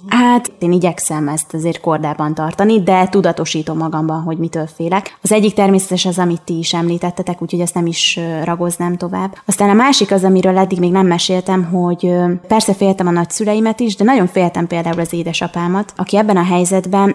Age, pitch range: 20-39, 175-190 Hz